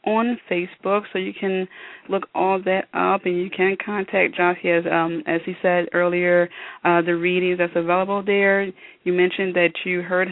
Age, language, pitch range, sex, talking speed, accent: 20-39, English, 170-205 Hz, female, 180 wpm, American